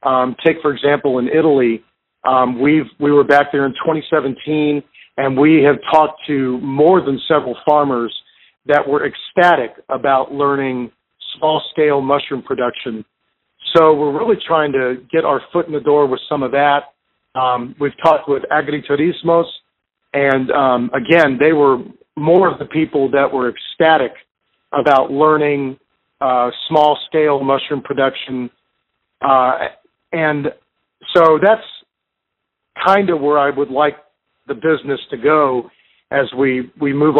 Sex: male